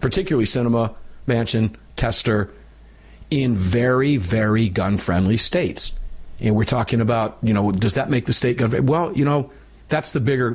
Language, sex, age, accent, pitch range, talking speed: English, male, 50-69, American, 80-125 Hz, 165 wpm